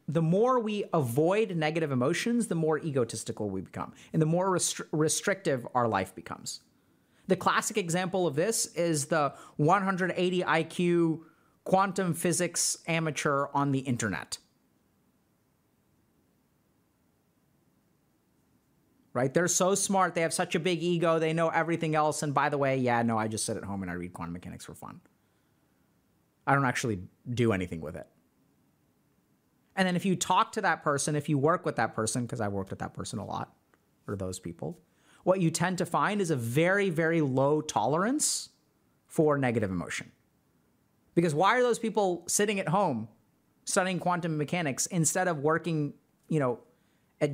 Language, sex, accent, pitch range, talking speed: English, male, American, 130-180 Hz, 160 wpm